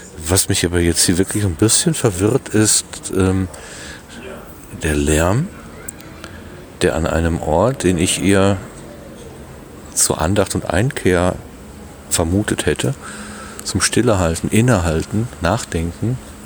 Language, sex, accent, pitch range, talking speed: German, male, German, 85-110 Hz, 110 wpm